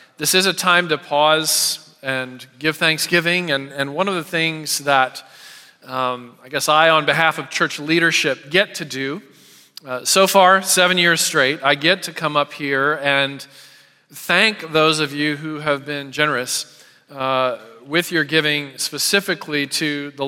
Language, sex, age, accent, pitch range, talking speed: English, male, 40-59, American, 135-160 Hz, 165 wpm